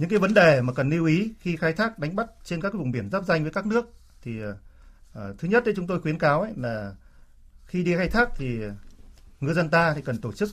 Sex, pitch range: male, 120-175 Hz